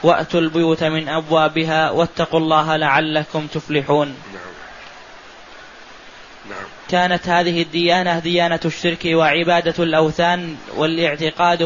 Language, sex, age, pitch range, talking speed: Arabic, male, 20-39, 160-170 Hz, 80 wpm